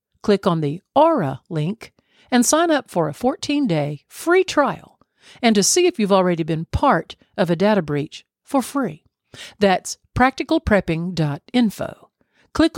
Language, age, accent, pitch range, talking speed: English, 50-69, American, 155-240 Hz, 140 wpm